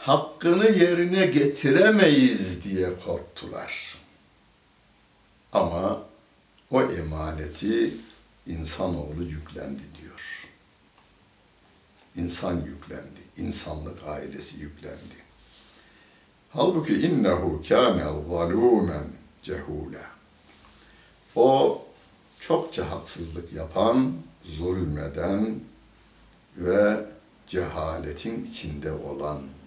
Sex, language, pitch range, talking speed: male, Turkish, 80-105 Hz, 60 wpm